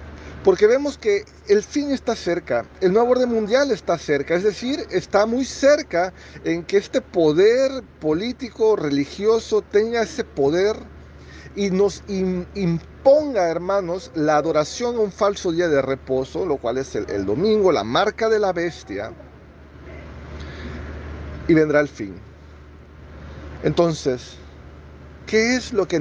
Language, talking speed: Spanish, 135 wpm